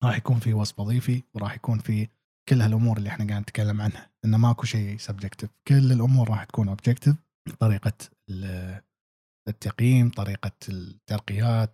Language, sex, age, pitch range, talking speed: Arabic, male, 20-39, 105-125 Hz, 145 wpm